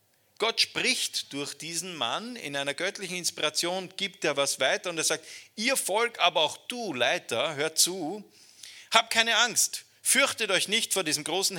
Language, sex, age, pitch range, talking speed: German, male, 40-59, 140-215 Hz, 170 wpm